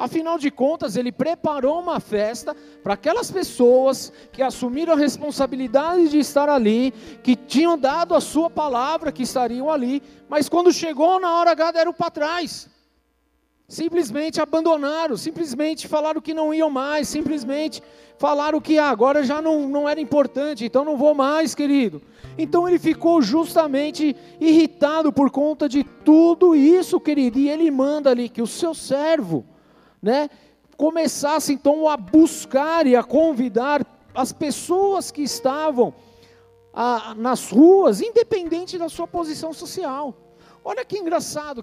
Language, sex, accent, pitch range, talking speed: Portuguese, male, Brazilian, 250-320 Hz, 145 wpm